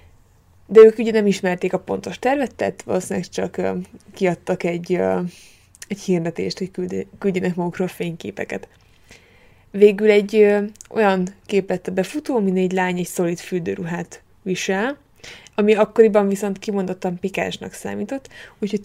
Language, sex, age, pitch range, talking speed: Hungarian, female, 20-39, 180-210 Hz, 135 wpm